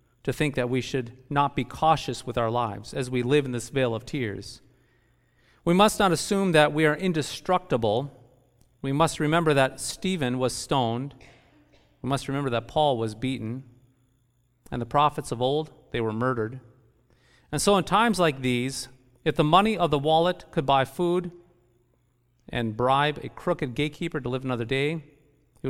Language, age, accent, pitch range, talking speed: English, 40-59, American, 120-155 Hz, 175 wpm